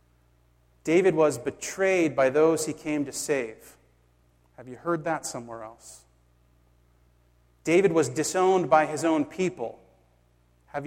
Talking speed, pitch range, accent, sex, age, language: 125 wpm, 120-170 Hz, American, male, 30-49, English